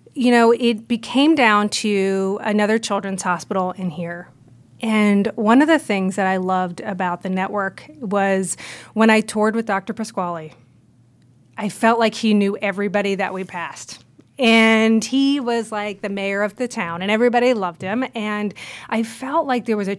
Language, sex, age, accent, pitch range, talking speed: English, female, 30-49, American, 185-220 Hz, 175 wpm